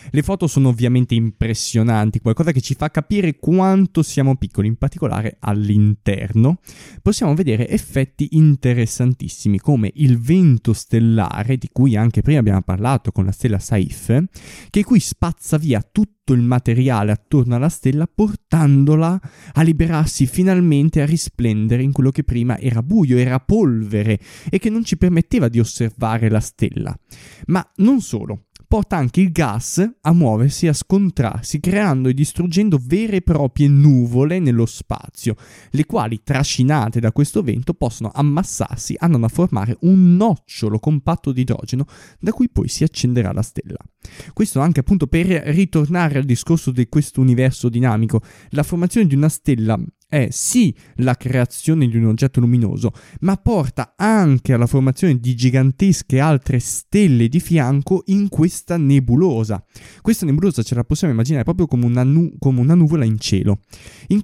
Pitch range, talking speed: 115-165 Hz, 155 wpm